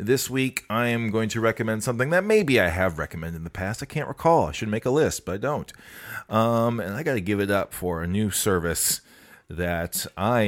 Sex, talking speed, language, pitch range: male, 235 wpm, English, 85-115 Hz